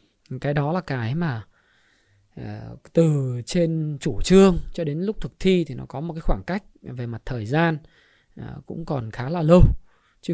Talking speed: 180 wpm